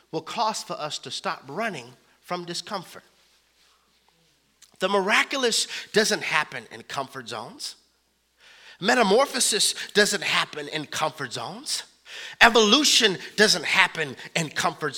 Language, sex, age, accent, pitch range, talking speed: English, male, 30-49, American, 165-235 Hz, 110 wpm